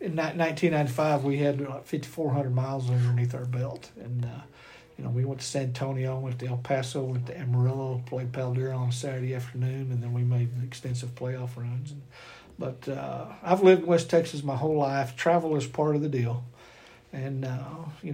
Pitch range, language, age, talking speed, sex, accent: 125-145 Hz, English, 60-79, 190 wpm, male, American